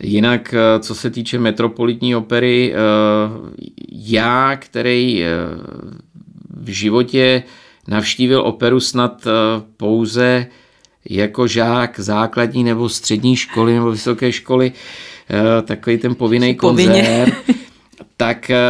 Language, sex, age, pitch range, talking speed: Czech, male, 50-69, 110-125 Hz, 90 wpm